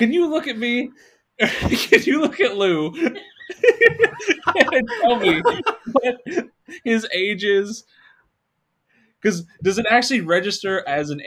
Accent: American